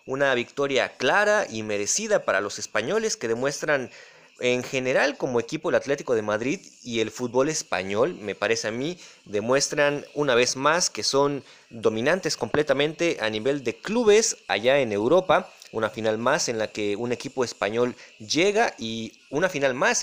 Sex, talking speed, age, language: male, 165 wpm, 30-49, English